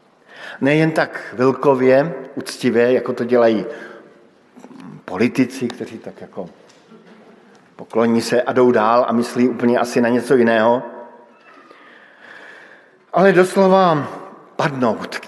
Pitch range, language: 130-175 Hz, Slovak